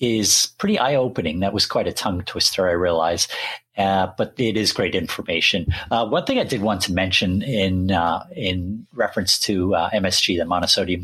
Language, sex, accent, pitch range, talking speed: English, male, American, 90-105 Hz, 190 wpm